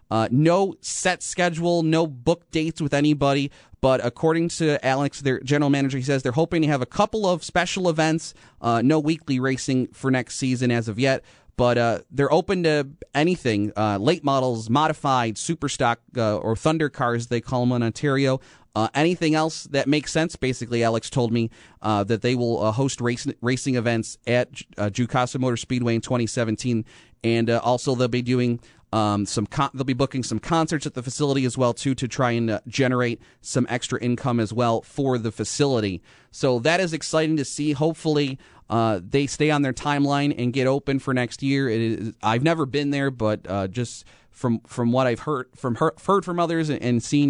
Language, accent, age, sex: English, American, 30-49, male